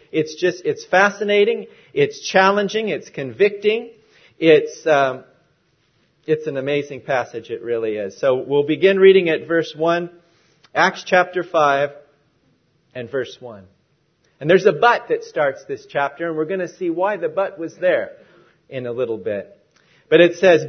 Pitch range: 165-270 Hz